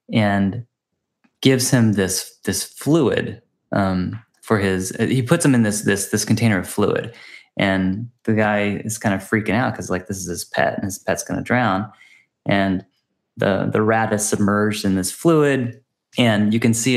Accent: American